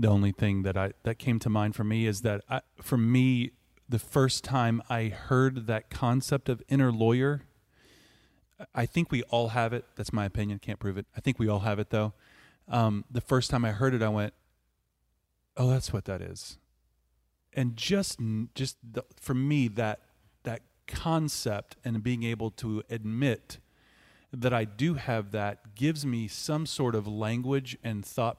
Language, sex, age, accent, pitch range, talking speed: English, male, 30-49, American, 105-125 Hz, 180 wpm